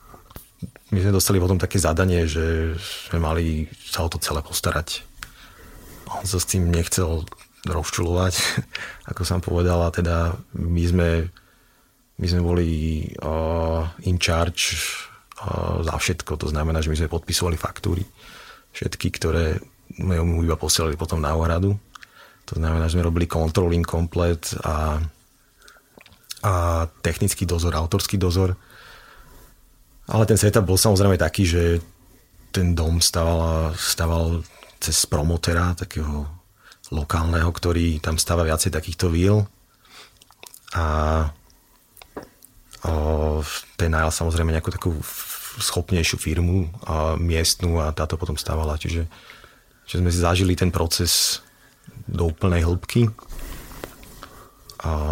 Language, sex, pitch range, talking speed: Slovak, male, 80-90 Hz, 120 wpm